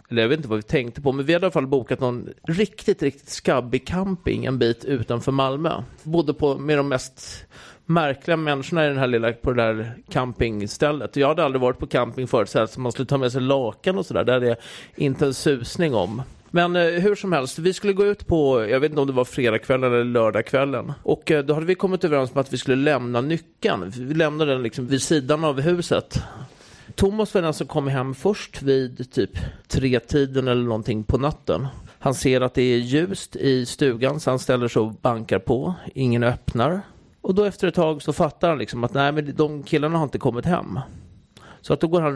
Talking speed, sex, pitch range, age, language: 220 wpm, male, 125-160 Hz, 30-49, English